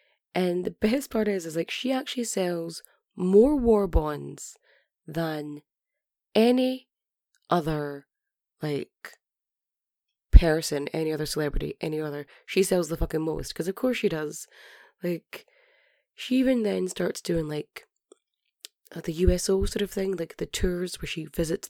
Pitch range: 165-245 Hz